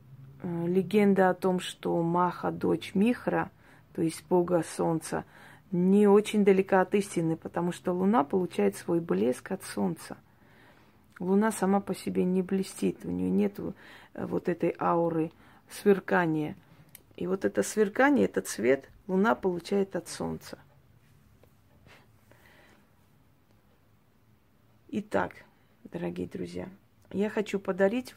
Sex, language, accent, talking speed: female, Russian, native, 115 wpm